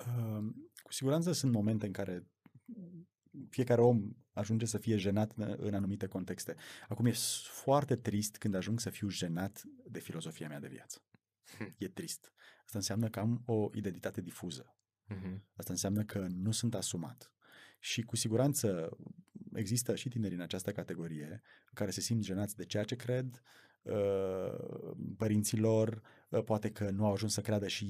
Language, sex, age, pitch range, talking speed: Romanian, male, 30-49, 100-125 Hz, 155 wpm